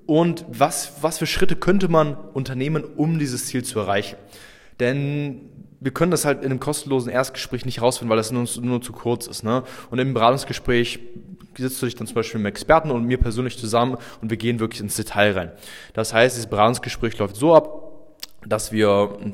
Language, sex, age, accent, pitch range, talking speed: German, male, 20-39, German, 110-135 Hz, 200 wpm